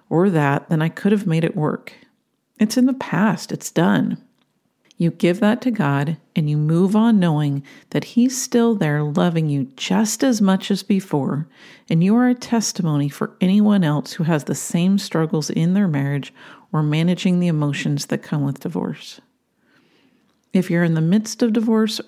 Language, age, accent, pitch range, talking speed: English, 50-69, American, 165-230 Hz, 180 wpm